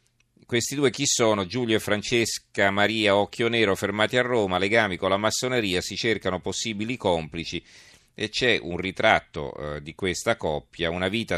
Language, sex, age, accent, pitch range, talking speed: Italian, male, 40-59, native, 90-110 Hz, 165 wpm